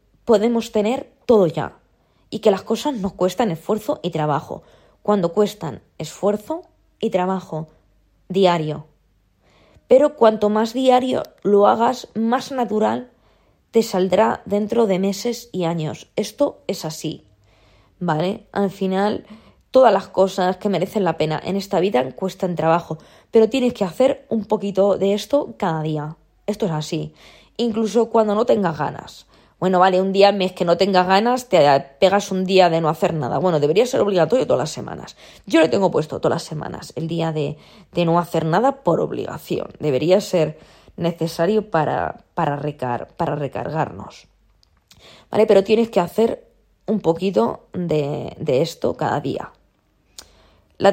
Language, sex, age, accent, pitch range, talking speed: Spanish, female, 20-39, Spanish, 160-215 Hz, 155 wpm